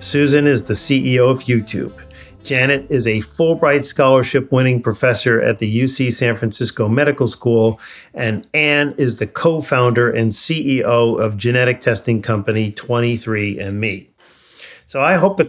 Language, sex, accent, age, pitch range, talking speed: English, male, American, 40-59, 115-140 Hz, 140 wpm